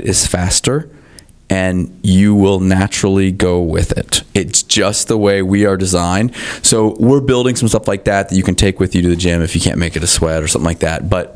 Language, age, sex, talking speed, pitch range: English, 20-39, male, 235 wpm, 95-115 Hz